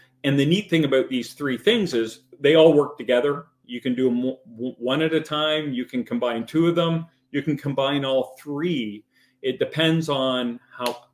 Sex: male